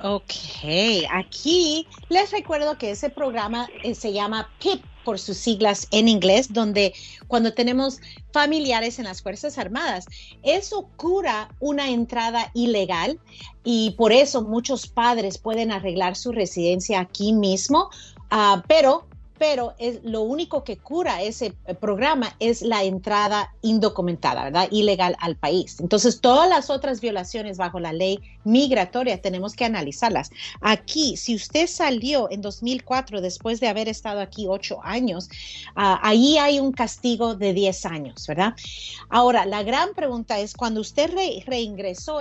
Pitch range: 195-265 Hz